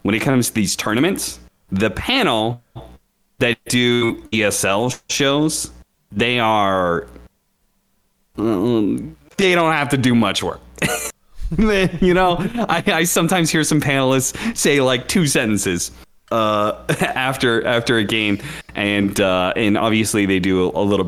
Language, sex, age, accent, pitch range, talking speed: English, male, 30-49, American, 90-120 Hz, 130 wpm